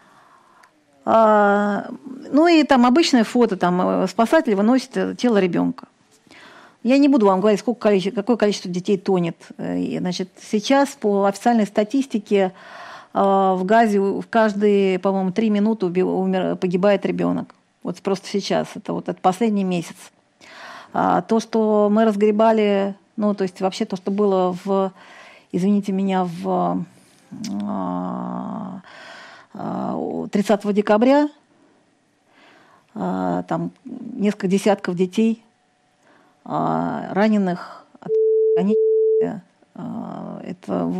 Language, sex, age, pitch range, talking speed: Russian, female, 40-59, 185-230 Hz, 95 wpm